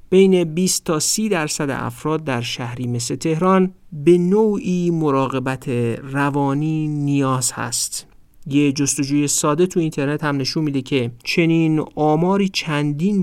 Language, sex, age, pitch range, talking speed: Persian, male, 50-69, 130-175 Hz, 125 wpm